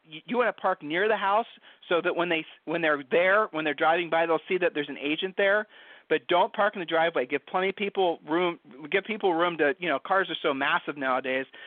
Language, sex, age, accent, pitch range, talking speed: English, male, 40-59, American, 160-205 Hz, 240 wpm